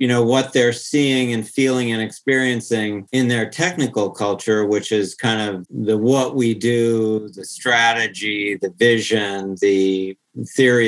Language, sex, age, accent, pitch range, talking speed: English, male, 50-69, American, 105-125 Hz, 150 wpm